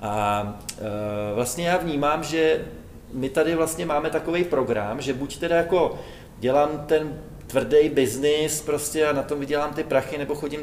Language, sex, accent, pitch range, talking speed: Czech, male, native, 135-165 Hz, 165 wpm